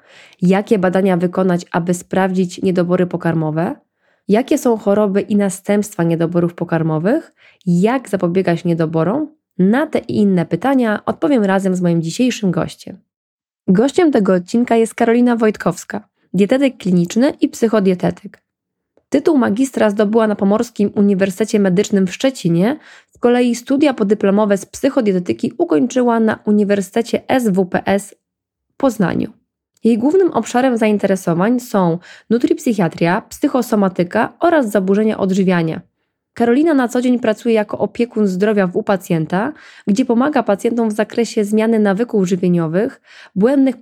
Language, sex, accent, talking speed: Polish, female, native, 120 wpm